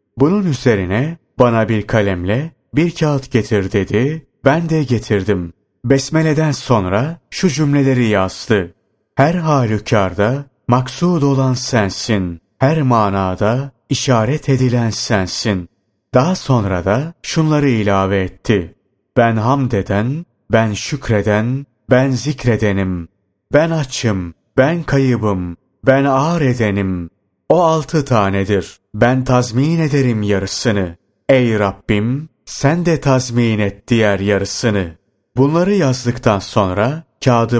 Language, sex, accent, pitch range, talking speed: Turkish, male, native, 105-135 Hz, 105 wpm